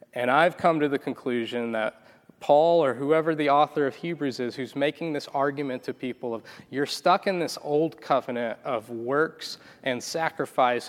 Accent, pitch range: American, 120-145 Hz